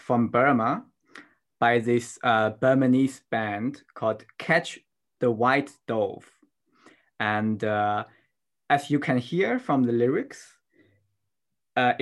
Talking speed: 110 wpm